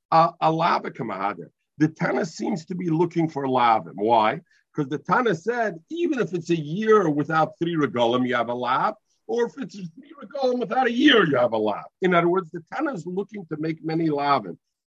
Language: English